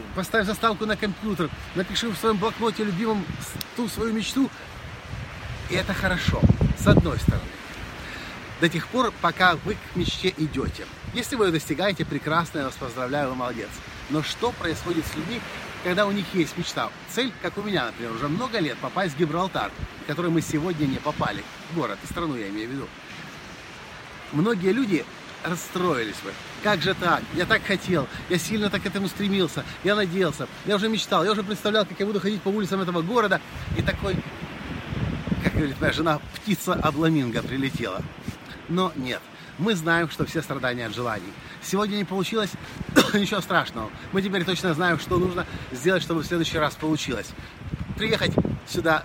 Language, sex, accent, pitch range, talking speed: Russian, male, native, 155-200 Hz, 170 wpm